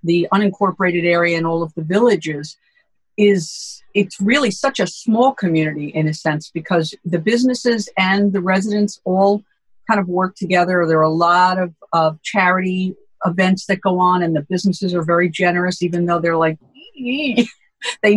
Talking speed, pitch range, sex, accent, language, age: 170 wpm, 170-210 Hz, female, American, English, 50-69